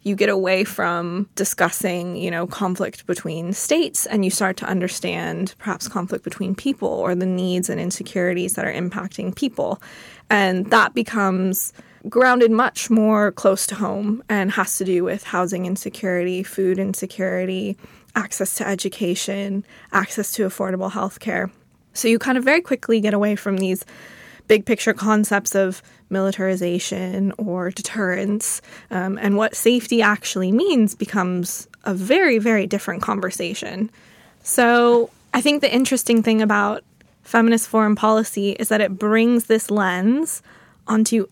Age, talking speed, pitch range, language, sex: 20-39, 145 wpm, 190-220 Hz, English, female